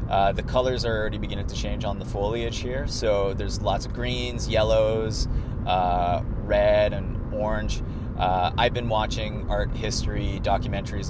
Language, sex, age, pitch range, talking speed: English, male, 30-49, 100-120 Hz, 155 wpm